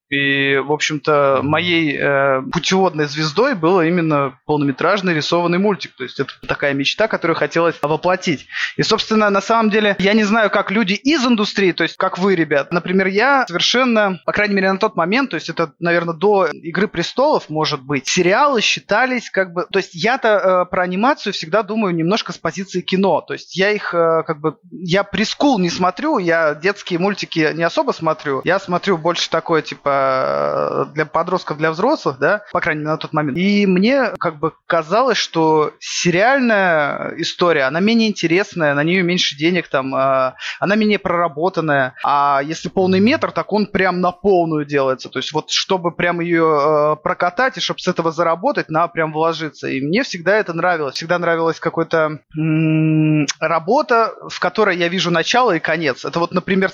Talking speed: 175 wpm